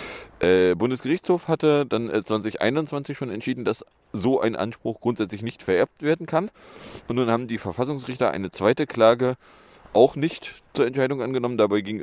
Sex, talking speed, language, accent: male, 155 wpm, German, German